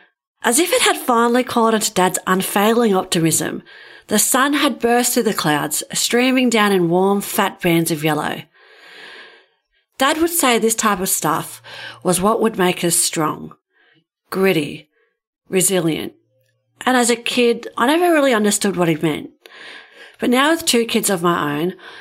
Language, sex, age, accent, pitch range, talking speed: English, female, 40-59, Australian, 175-230 Hz, 160 wpm